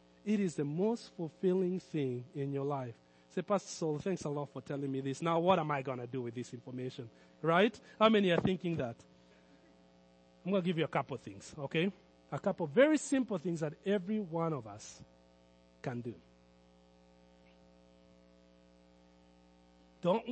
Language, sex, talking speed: English, male, 175 wpm